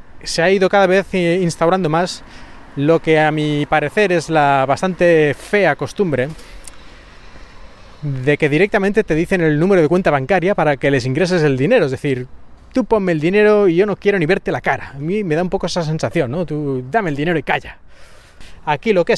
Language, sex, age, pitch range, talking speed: Spanish, male, 30-49, 145-190 Hz, 205 wpm